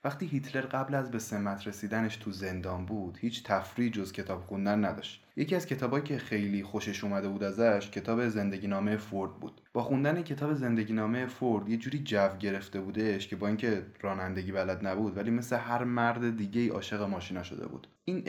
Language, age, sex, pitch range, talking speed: Persian, 20-39, male, 105-130 Hz, 185 wpm